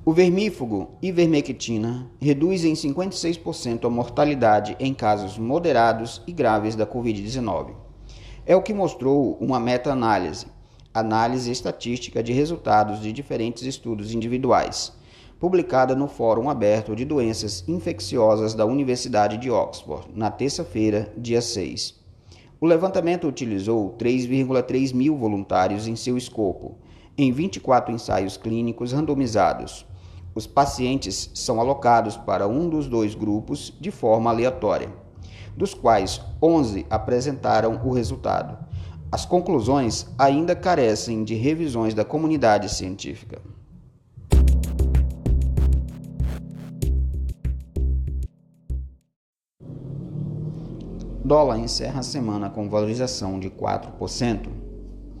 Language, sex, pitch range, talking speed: Portuguese, male, 105-135 Hz, 100 wpm